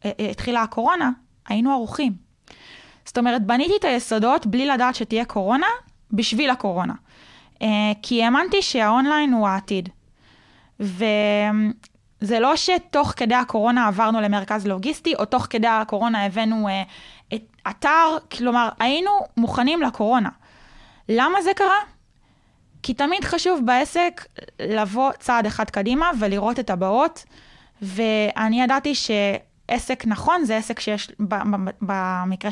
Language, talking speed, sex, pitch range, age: Hebrew, 115 wpm, female, 210-270 Hz, 20-39